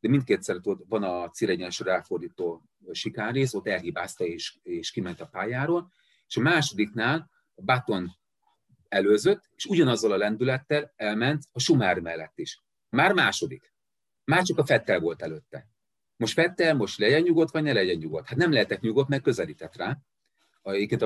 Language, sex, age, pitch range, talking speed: Hungarian, male, 40-59, 100-165 Hz, 155 wpm